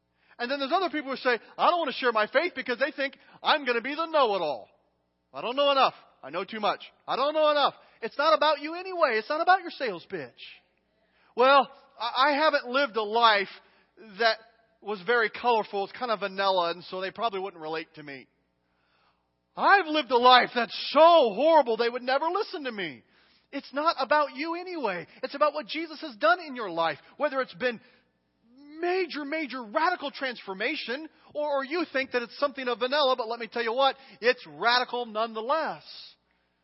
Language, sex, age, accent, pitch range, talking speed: English, male, 40-59, American, 195-280 Hz, 195 wpm